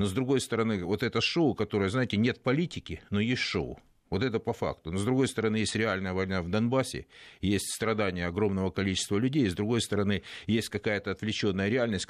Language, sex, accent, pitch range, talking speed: Russian, male, native, 95-115 Hz, 195 wpm